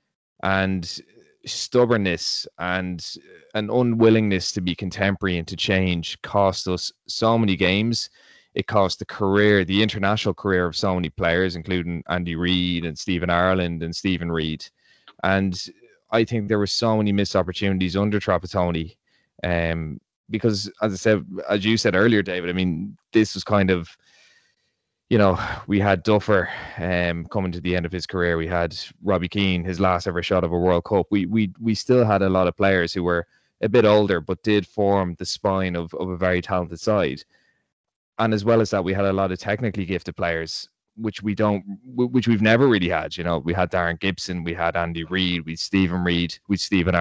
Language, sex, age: English, male, 20-39